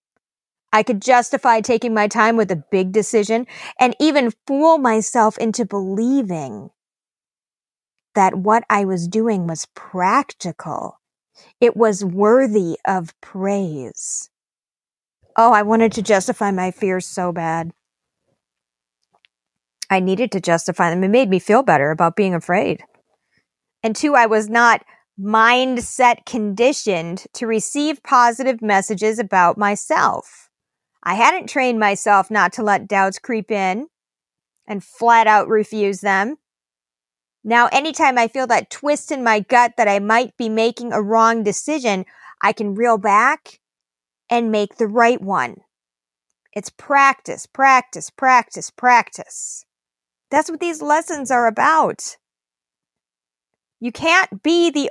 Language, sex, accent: English, female, American